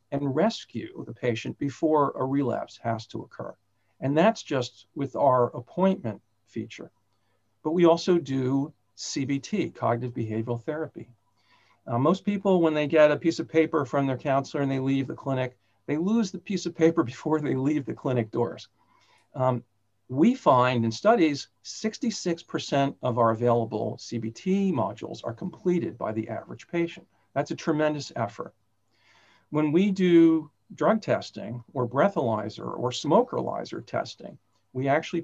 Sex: male